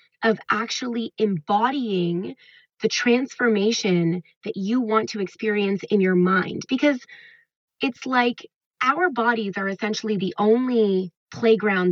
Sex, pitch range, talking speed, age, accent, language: female, 185-235 Hz, 115 wpm, 20-39, American, English